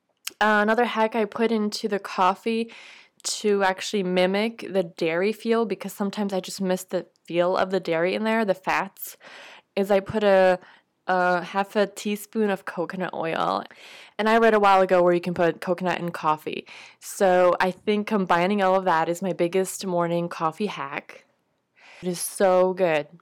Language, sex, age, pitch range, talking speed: English, female, 20-39, 175-210 Hz, 180 wpm